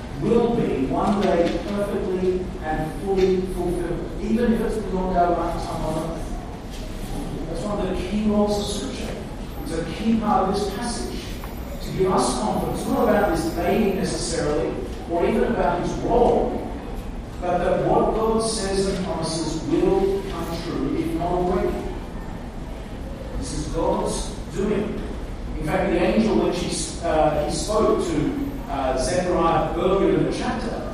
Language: English